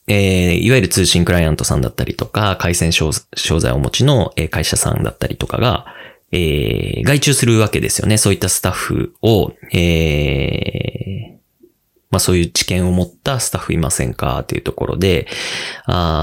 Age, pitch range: 20-39, 85-120 Hz